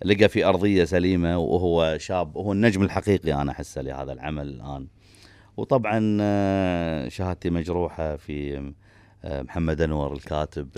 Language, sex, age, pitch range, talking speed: Arabic, male, 30-49, 75-95 Hz, 115 wpm